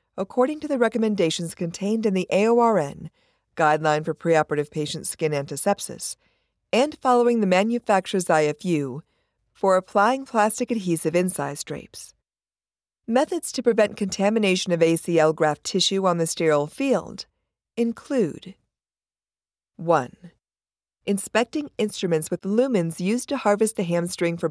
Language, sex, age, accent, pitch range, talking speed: English, female, 50-69, American, 160-225 Hz, 120 wpm